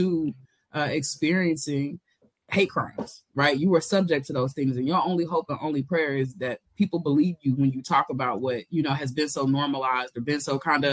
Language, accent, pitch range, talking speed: English, American, 135-165 Hz, 220 wpm